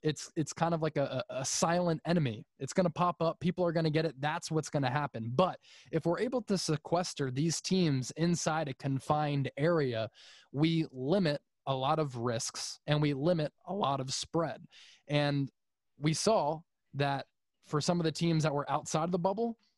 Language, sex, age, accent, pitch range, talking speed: English, male, 20-39, American, 140-170 Hz, 195 wpm